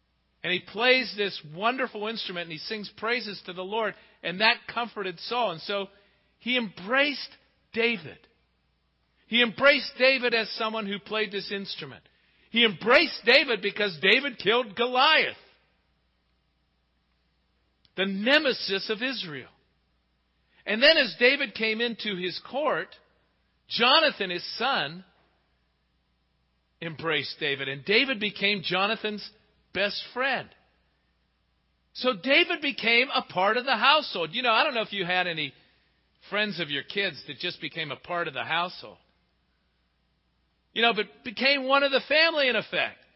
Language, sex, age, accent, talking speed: English, male, 50-69, American, 140 wpm